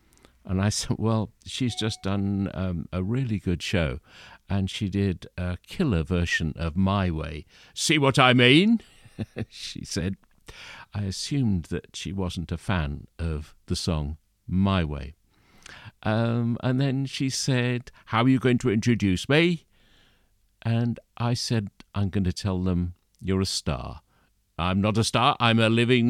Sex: male